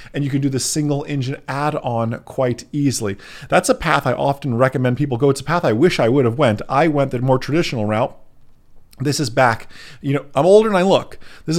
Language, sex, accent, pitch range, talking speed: English, male, American, 110-140 Hz, 235 wpm